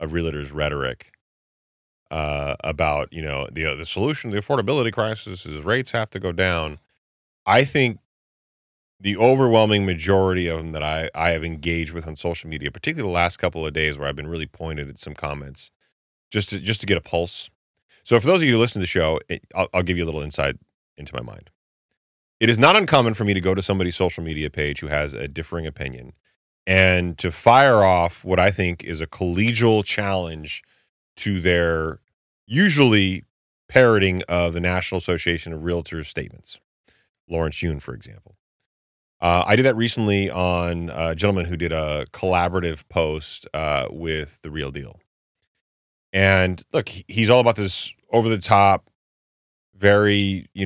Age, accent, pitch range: 30-49, American, 80-100 Hz